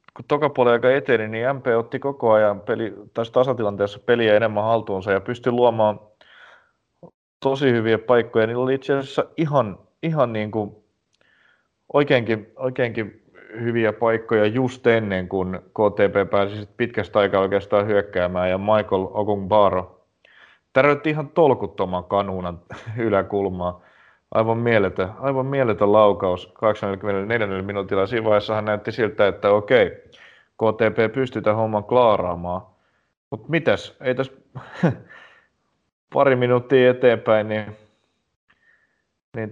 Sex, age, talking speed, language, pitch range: male, 30-49, 120 wpm, Finnish, 100-120 Hz